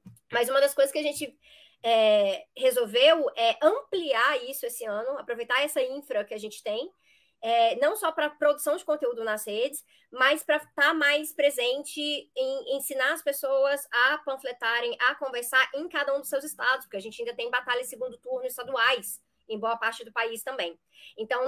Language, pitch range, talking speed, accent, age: Portuguese, 245-300 Hz, 190 wpm, Brazilian, 20-39